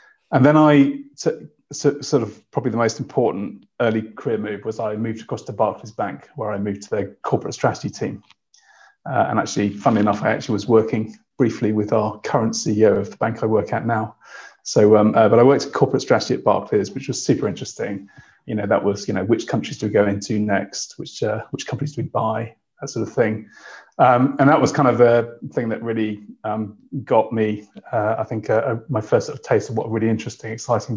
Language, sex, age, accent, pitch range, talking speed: English, male, 30-49, British, 110-135 Hz, 225 wpm